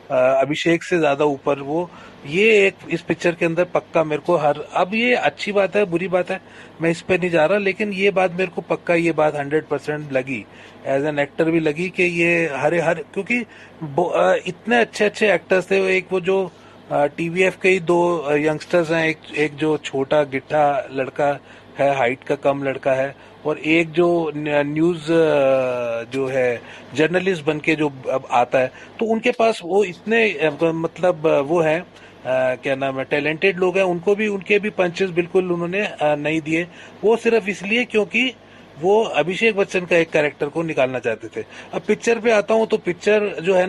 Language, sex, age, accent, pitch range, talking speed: Hindi, male, 30-49, native, 150-195 Hz, 185 wpm